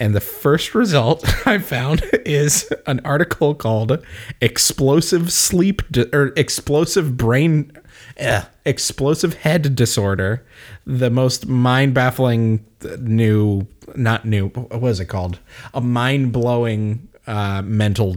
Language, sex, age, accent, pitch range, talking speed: English, male, 20-39, American, 110-140 Hz, 100 wpm